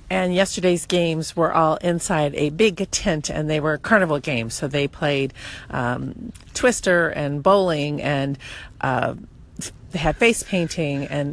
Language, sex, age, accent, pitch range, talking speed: English, female, 40-59, American, 150-195 Hz, 150 wpm